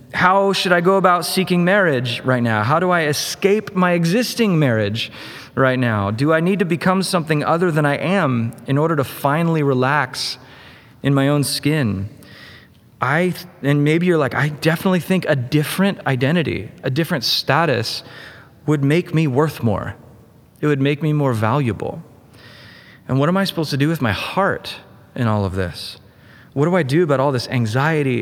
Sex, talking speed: male, 180 wpm